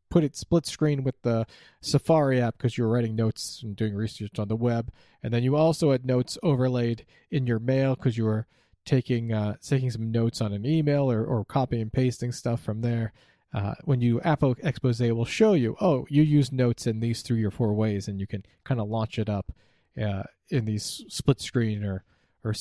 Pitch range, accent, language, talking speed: 110-140 Hz, American, English, 210 wpm